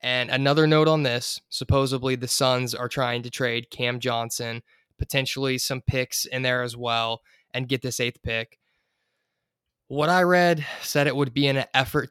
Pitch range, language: 120-135 Hz, English